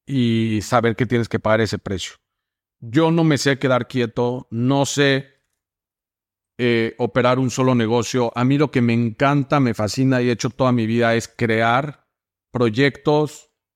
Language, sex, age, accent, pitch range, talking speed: English, male, 40-59, Mexican, 120-155 Hz, 165 wpm